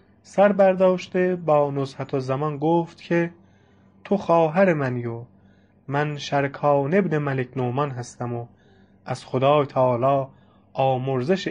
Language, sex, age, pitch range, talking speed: English, male, 20-39, 125-155 Hz, 120 wpm